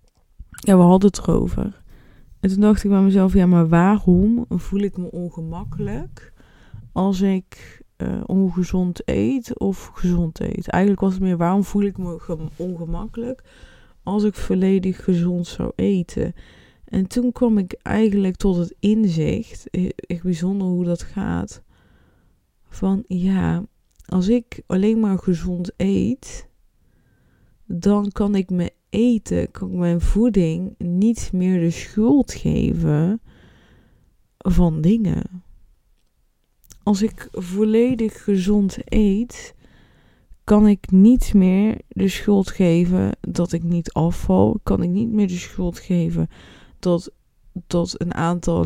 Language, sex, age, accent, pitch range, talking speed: Dutch, female, 20-39, Dutch, 175-205 Hz, 130 wpm